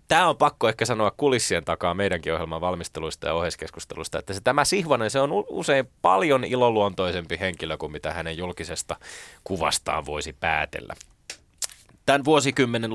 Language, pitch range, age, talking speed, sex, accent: Finnish, 85-115 Hz, 20-39, 145 wpm, male, native